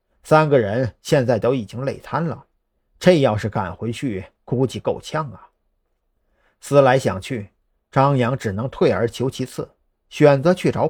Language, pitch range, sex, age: Chinese, 100-150 Hz, male, 50-69